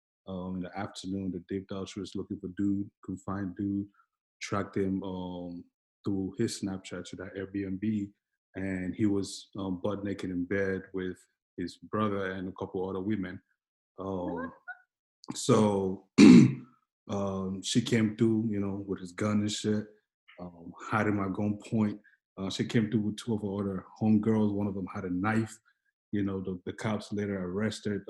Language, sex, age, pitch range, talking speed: English, male, 20-39, 95-110 Hz, 170 wpm